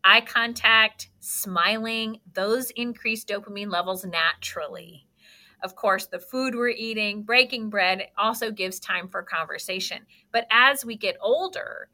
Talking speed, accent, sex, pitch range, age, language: 130 wpm, American, female, 195-240 Hz, 40-59, English